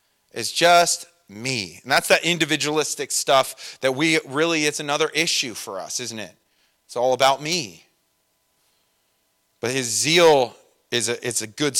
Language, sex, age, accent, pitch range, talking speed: English, male, 30-49, American, 115-145 Hz, 155 wpm